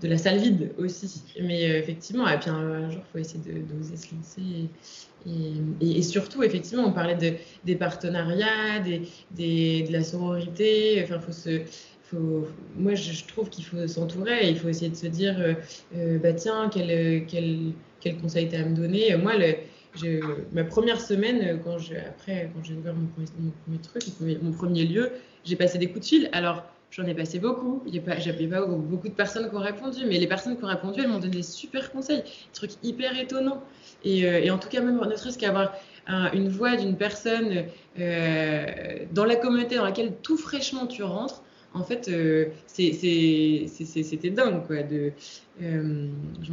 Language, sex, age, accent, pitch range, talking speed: French, female, 20-39, French, 165-210 Hz, 205 wpm